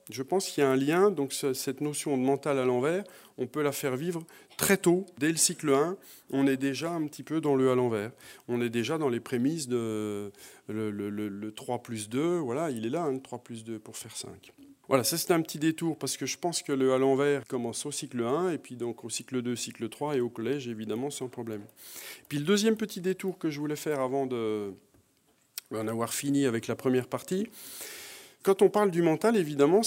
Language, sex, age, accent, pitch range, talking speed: French, male, 40-59, French, 115-160 Hz, 235 wpm